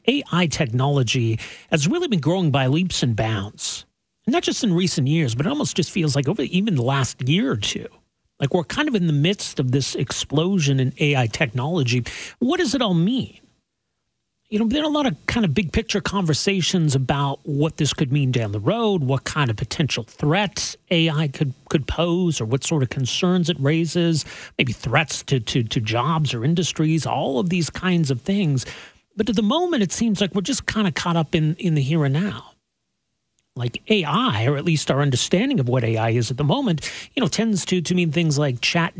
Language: English